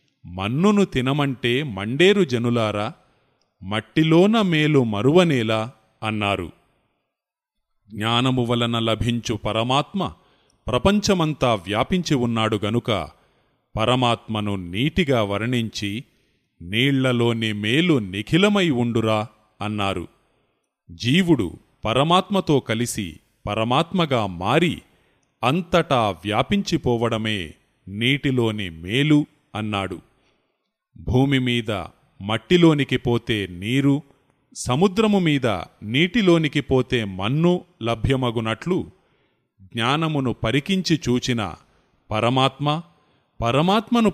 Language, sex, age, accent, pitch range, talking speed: Telugu, male, 30-49, native, 110-150 Hz, 65 wpm